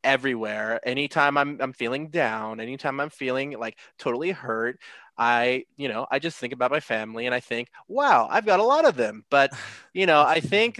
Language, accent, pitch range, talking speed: English, American, 125-155 Hz, 200 wpm